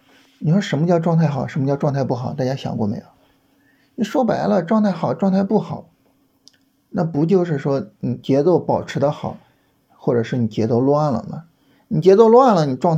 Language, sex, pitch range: Chinese, male, 135-185 Hz